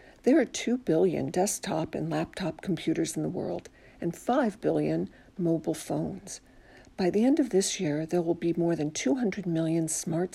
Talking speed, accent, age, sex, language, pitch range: 175 wpm, American, 60-79, female, English, 160-205 Hz